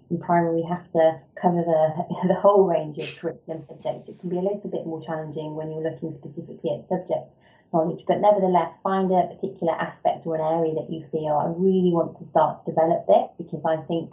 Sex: female